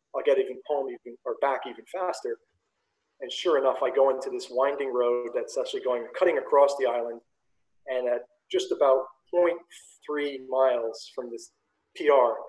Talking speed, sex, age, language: 160 wpm, male, 30-49, English